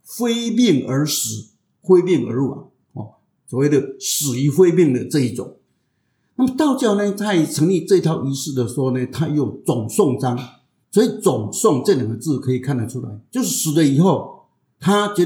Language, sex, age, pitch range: Chinese, male, 50-69, 130-175 Hz